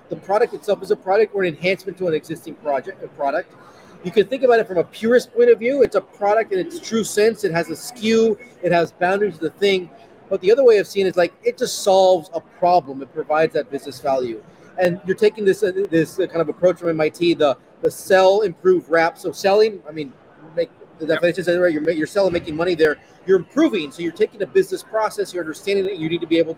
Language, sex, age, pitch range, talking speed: English, male, 30-49, 165-215 Hz, 240 wpm